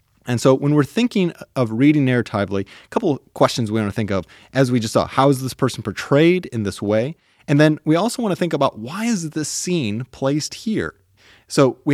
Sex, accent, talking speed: male, American, 225 wpm